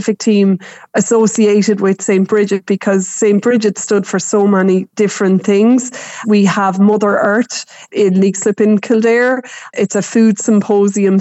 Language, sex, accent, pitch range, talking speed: English, female, Irish, 190-210 Hz, 140 wpm